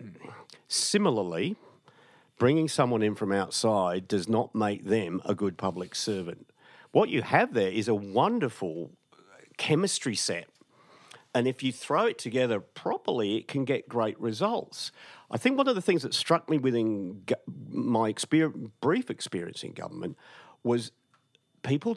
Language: English